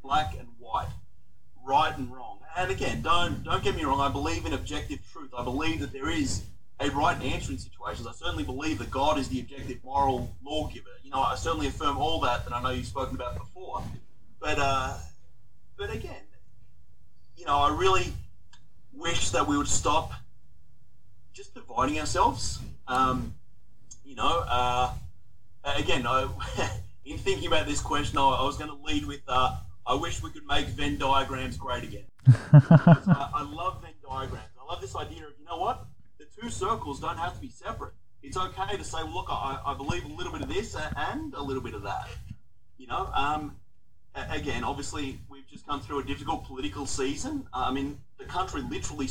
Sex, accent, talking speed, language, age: male, Australian, 190 wpm, English, 30-49